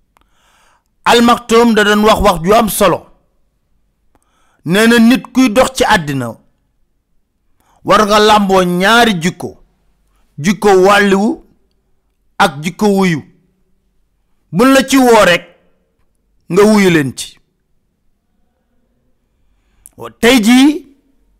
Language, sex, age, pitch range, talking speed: French, male, 50-69, 160-230 Hz, 35 wpm